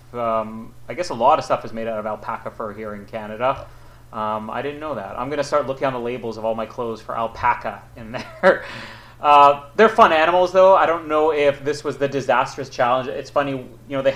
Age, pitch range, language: 30-49, 120-140 Hz, English